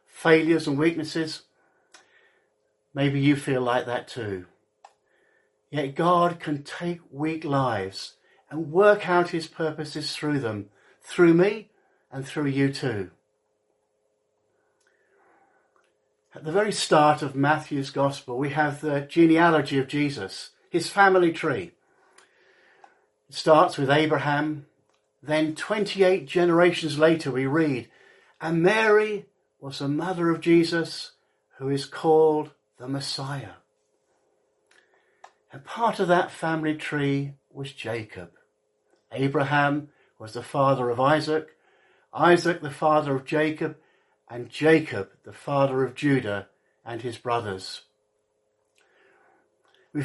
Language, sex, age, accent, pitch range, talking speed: English, male, 50-69, British, 135-170 Hz, 115 wpm